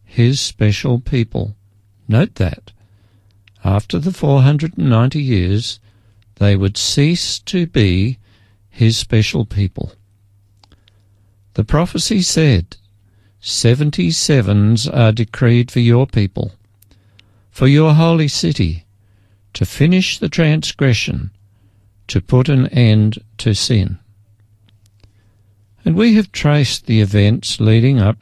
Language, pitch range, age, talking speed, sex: English, 100-130 Hz, 50-69, 100 wpm, male